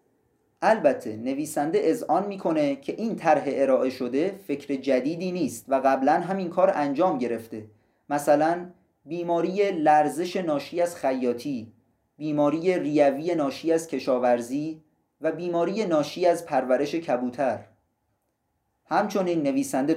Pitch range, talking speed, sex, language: 130-185 Hz, 110 wpm, male, Persian